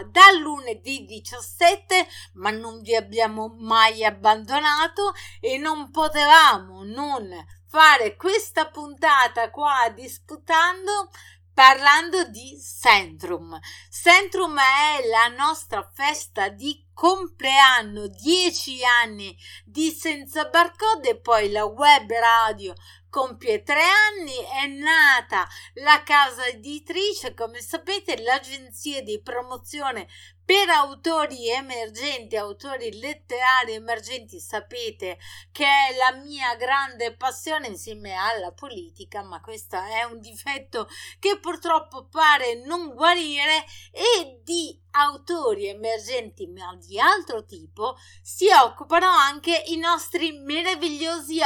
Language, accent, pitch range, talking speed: Italian, native, 235-335 Hz, 105 wpm